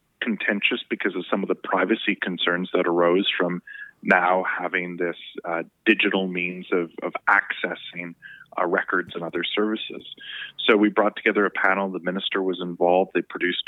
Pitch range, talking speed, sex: 90-105 Hz, 160 wpm, male